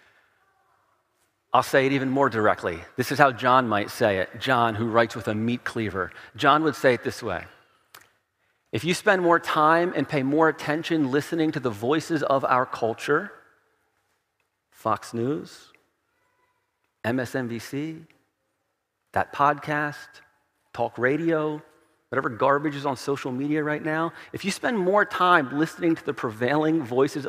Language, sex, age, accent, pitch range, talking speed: English, male, 40-59, American, 120-155 Hz, 145 wpm